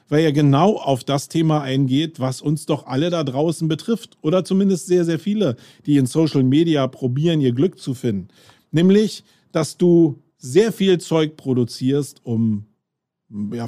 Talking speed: 160 wpm